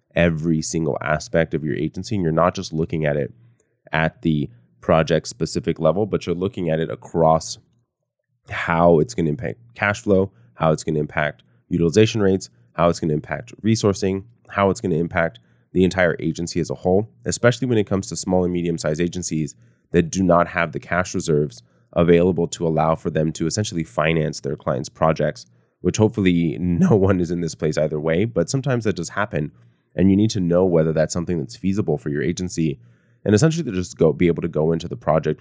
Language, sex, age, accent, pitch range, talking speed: English, male, 20-39, American, 75-90 Hz, 205 wpm